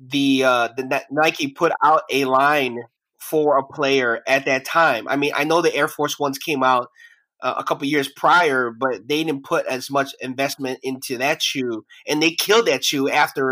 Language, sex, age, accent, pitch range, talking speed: English, male, 20-39, American, 130-165 Hz, 205 wpm